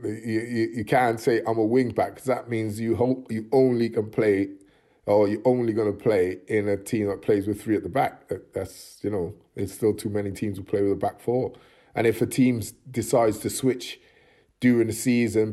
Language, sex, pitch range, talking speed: English, male, 100-120 Hz, 225 wpm